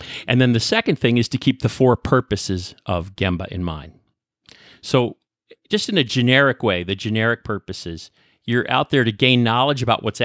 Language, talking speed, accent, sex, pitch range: English, 185 wpm, American, male, 95-130 Hz